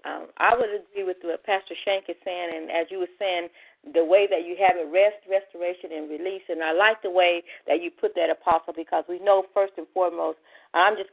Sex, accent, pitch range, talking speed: female, American, 165-195 Hz, 230 wpm